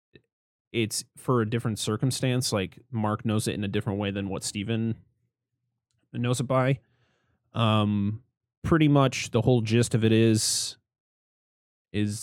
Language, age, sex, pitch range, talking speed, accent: English, 30-49, male, 100-120 Hz, 140 wpm, American